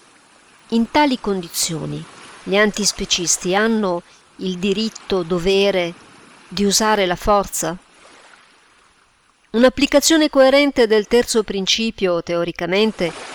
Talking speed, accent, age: 85 wpm, native, 50-69